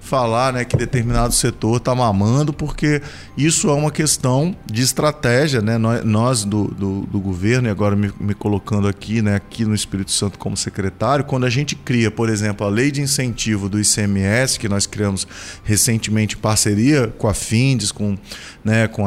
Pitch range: 110-145 Hz